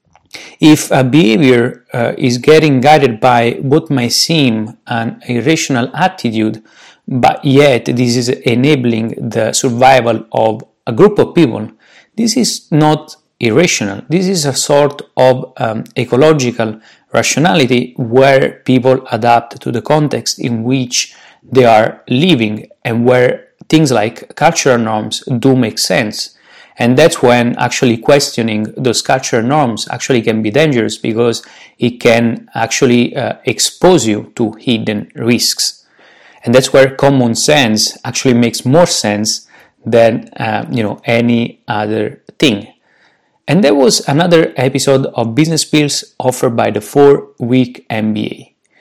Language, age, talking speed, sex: English, 30-49, 135 wpm, male